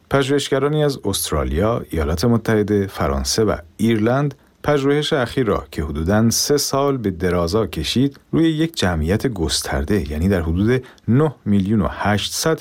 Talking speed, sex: 140 wpm, male